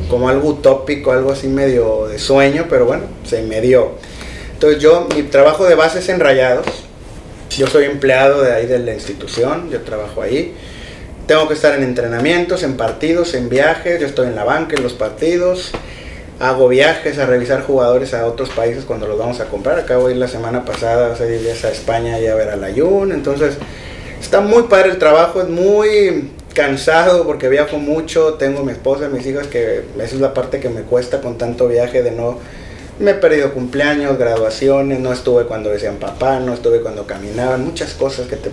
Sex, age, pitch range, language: male, 30-49, 125-165 Hz, Spanish